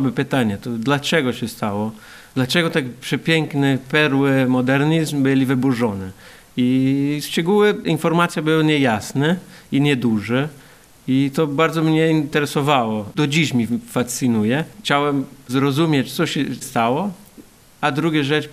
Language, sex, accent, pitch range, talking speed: Polish, male, native, 125-150 Hz, 115 wpm